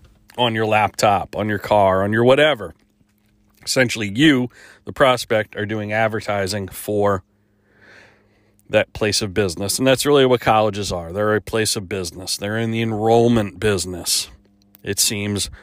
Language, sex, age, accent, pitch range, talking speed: English, male, 40-59, American, 95-115 Hz, 150 wpm